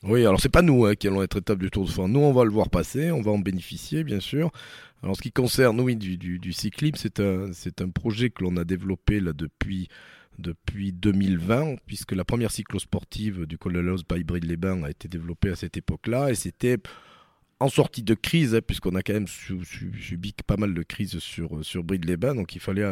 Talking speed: 215 wpm